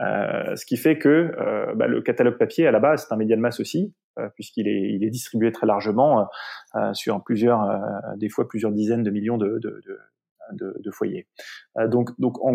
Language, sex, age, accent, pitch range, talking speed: French, male, 20-39, French, 105-130 Hz, 220 wpm